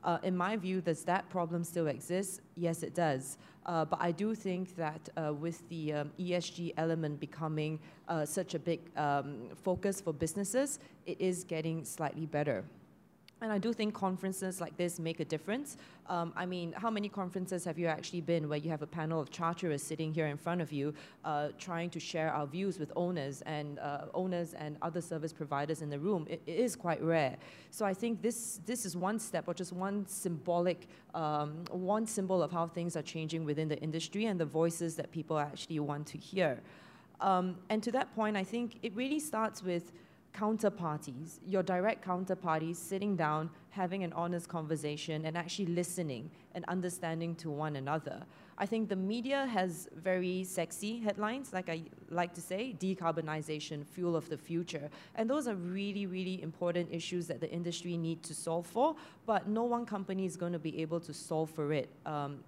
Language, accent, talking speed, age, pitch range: English, Malaysian, 190 wpm, 30-49, 160-190 Hz